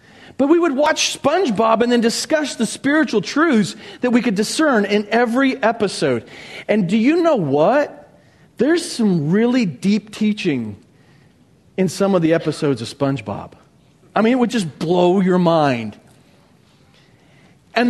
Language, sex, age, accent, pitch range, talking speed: English, male, 40-59, American, 170-240 Hz, 150 wpm